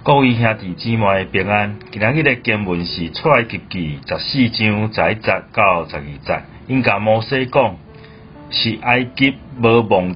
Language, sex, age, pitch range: Chinese, male, 40-59, 100-130 Hz